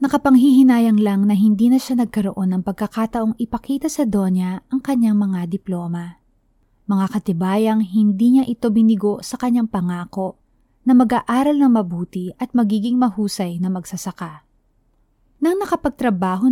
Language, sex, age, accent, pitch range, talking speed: Filipino, female, 20-39, native, 185-250 Hz, 130 wpm